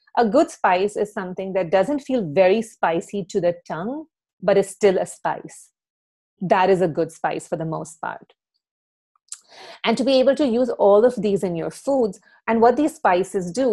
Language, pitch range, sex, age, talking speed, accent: English, 180-235 Hz, female, 30-49, 190 wpm, Indian